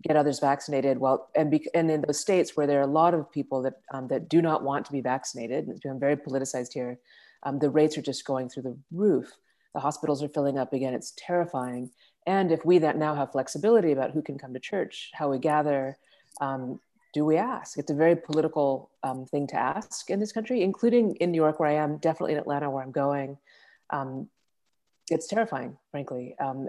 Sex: female